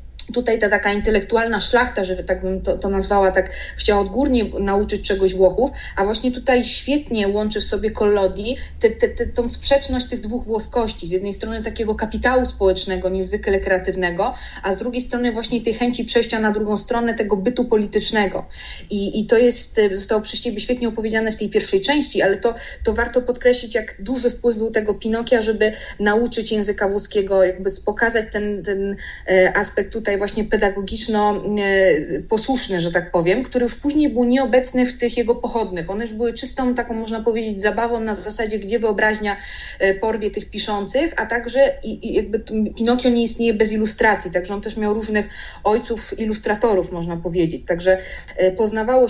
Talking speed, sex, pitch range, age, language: 170 wpm, female, 200-235 Hz, 20-39, Polish